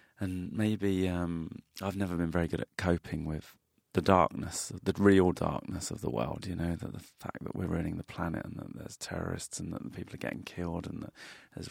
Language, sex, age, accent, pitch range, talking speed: English, male, 30-49, British, 85-100 Hz, 215 wpm